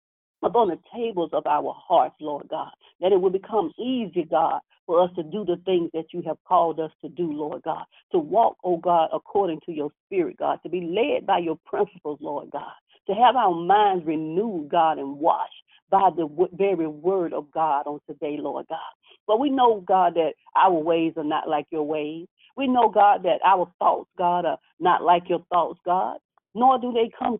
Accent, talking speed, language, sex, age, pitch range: American, 210 wpm, English, female, 50-69, 155-210 Hz